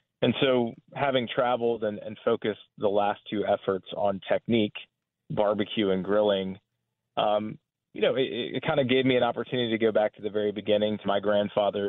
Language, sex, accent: English, male, American